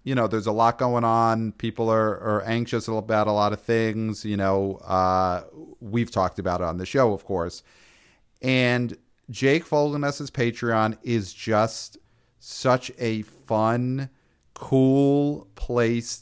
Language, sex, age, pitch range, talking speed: English, male, 40-59, 100-125 Hz, 145 wpm